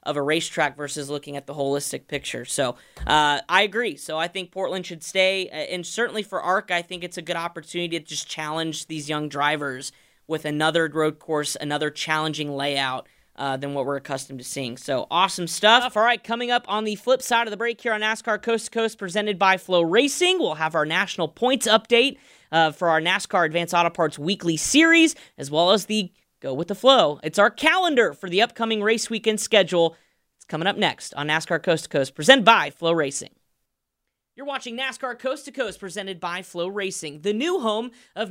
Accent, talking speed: American, 205 wpm